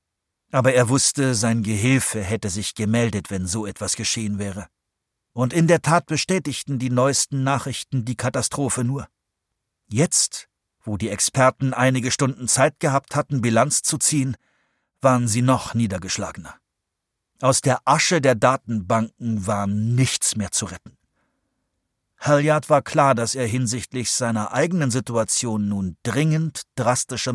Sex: male